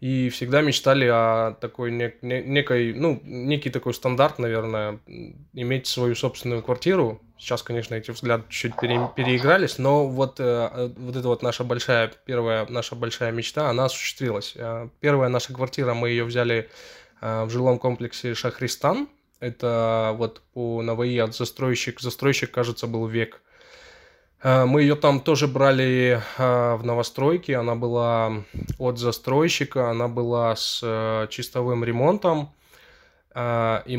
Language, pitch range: English, 120-135 Hz